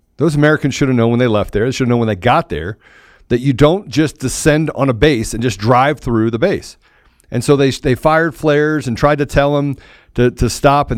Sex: male